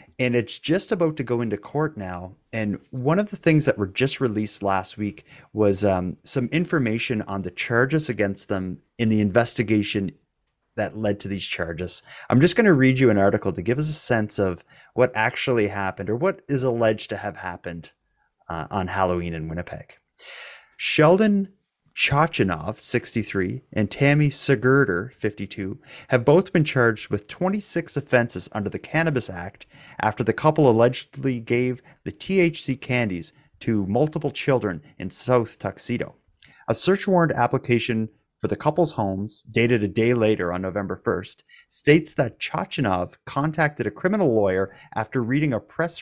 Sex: male